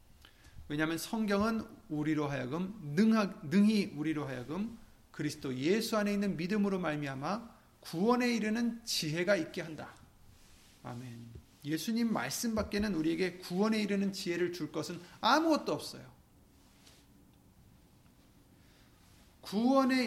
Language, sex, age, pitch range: Korean, male, 30-49, 135-220 Hz